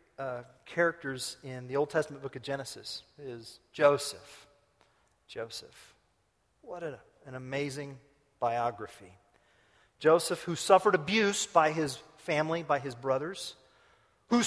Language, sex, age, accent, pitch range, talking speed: English, male, 40-59, American, 120-155 Hz, 110 wpm